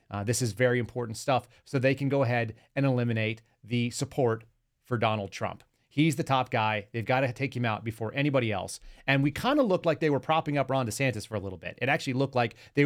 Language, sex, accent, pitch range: English, male, American, 115-135 Hz